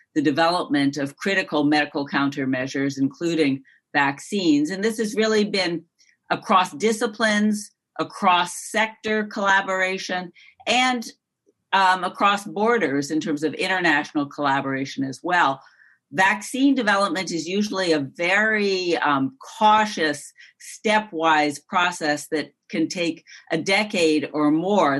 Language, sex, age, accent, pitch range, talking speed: English, female, 50-69, American, 150-195 Hz, 110 wpm